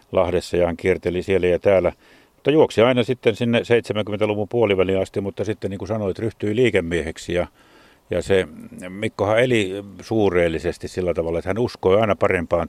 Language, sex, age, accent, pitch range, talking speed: Finnish, male, 50-69, native, 85-105 Hz, 165 wpm